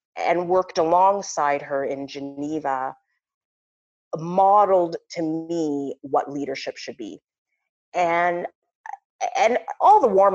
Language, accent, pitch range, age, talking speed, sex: English, American, 145-195 Hz, 30-49, 105 wpm, female